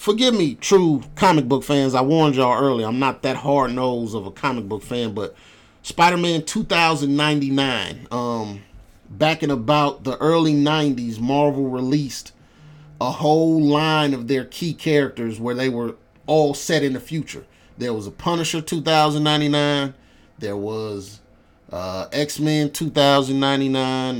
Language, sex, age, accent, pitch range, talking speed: English, male, 30-49, American, 120-150 Hz, 135 wpm